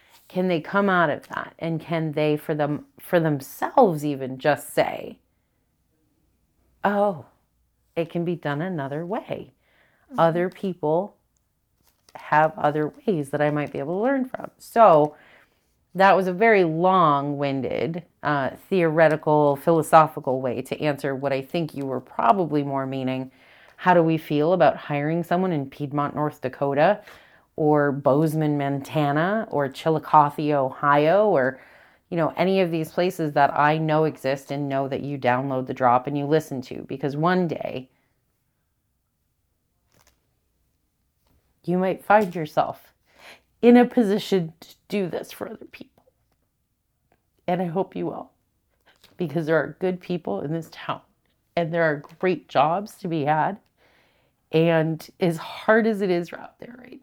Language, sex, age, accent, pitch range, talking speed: English, female, 30-49, American, 145-180 Hz, 150 wpm